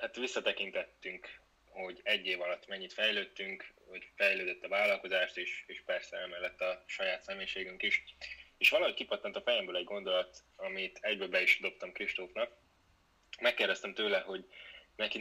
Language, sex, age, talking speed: Hungarian, male, 20-39, 145 wpm